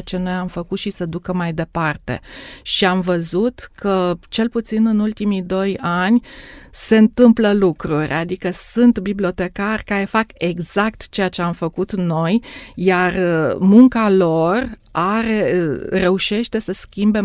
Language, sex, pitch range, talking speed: Romanian, female, 175-210 Hz, 135 wpm